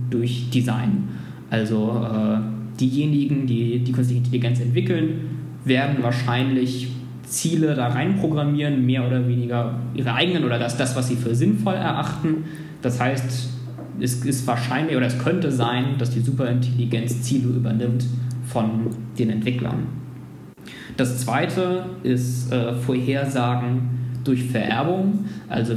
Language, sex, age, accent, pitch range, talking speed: German, male, 20-39, German, 120-145 Hz, 120 wpm